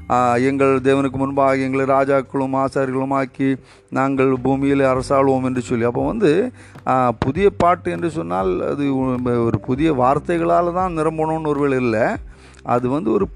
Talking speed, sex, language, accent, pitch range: 45 wpm, male, Hindi, native, 115-150 Hz